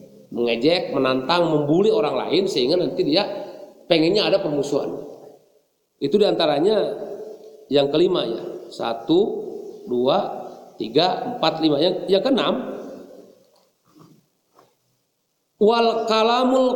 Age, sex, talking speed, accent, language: 50-69, male, 90 wpm, native, Indonesian